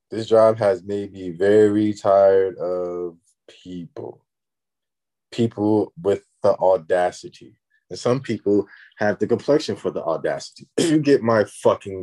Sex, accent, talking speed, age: male, American, 130 wpm, 20-39